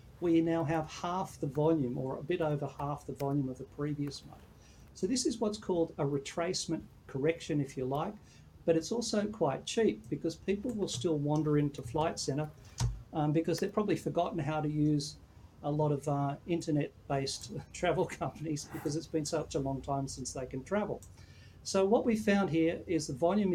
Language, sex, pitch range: English, male, 140-170 Hz